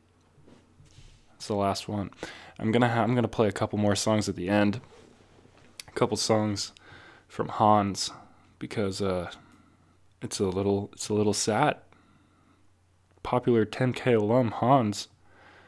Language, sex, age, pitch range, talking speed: English, male, 10-29, 95-110 Hz, 135 wpm